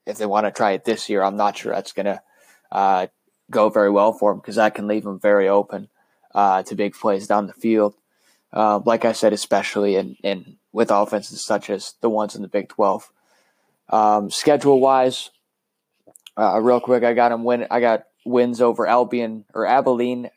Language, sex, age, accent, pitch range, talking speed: English, male, 20-39, American, 105-120 Hz, 200 wpm